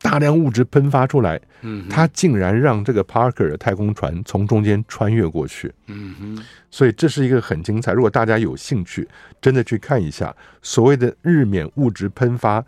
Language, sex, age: Chinese, male, 50-69